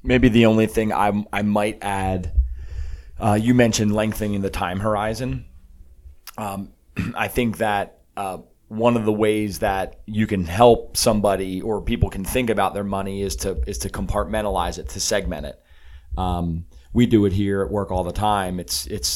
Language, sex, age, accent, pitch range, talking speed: English, male, 30-49, American, 95-110 Hz, 180 wpm